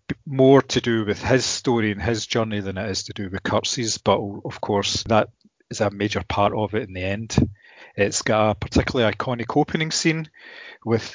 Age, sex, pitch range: 30-49, male, 105-125 Hz